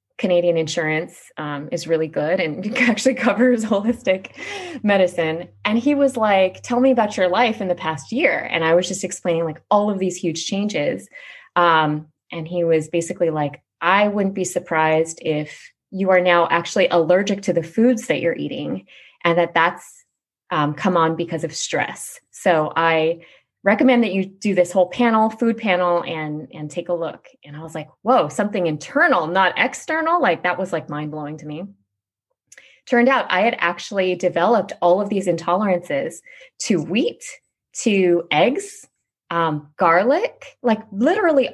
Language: English